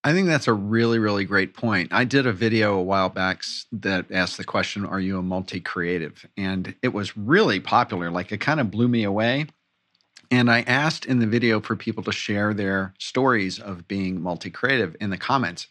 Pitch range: 95-120 Hz